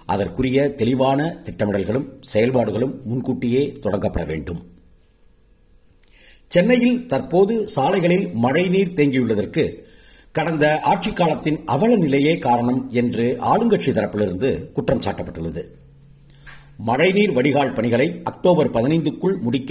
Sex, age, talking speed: male, 50-69, 90 wpm